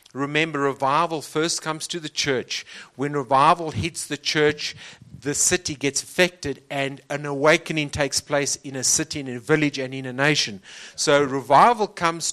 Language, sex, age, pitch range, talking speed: English, male, 50-69, 135-155 Hz, 165 wpm